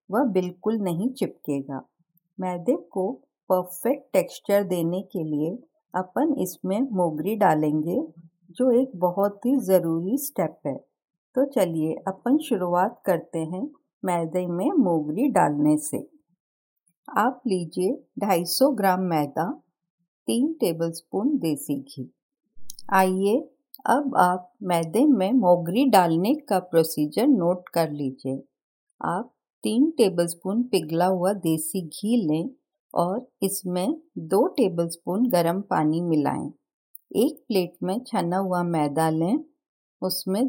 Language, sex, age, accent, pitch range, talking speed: Hindi, female, 50-69, native, 170-245 Hz, 115 wpm